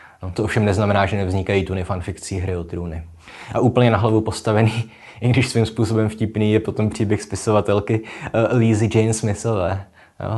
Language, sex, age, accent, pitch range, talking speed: Czech, male, 20-39, native, 95-110 Hz, 175 wpm